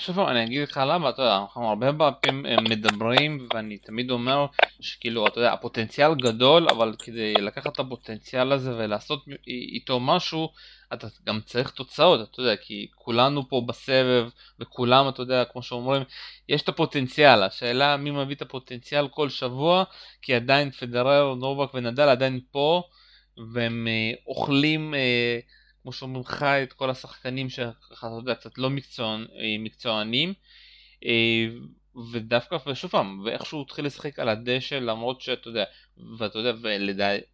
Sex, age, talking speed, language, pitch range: male, 20-39, 150 wpm, Hebrew, 115-135 Hz